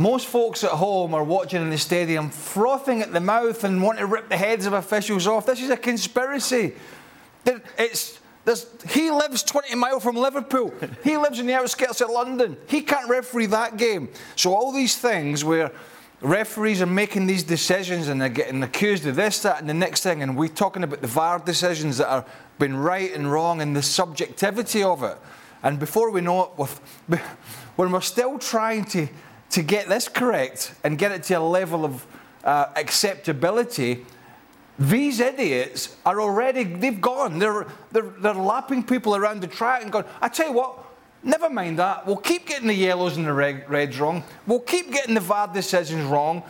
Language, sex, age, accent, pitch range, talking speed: English, male, 30-49, British, 160-240 Hz, 190 wpm